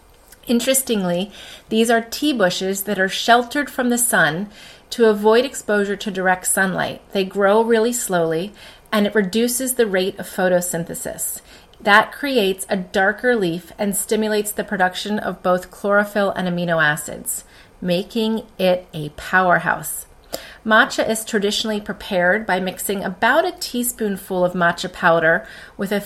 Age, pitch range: 30-49, 180-225 Hz